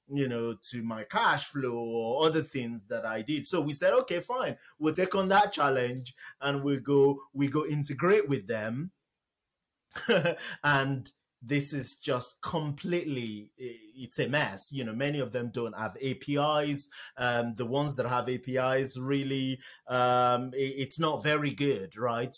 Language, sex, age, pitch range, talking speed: English, male, 30-49, 120-150 Hz, 160 wpm